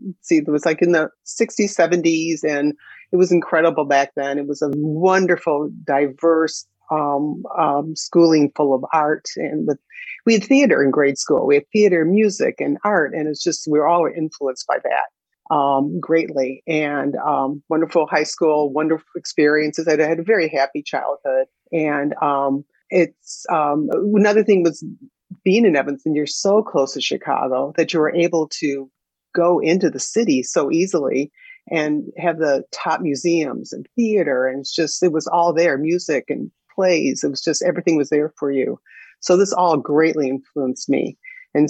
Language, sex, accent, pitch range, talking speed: English, female, American, 145-175 Hz, 170 wpm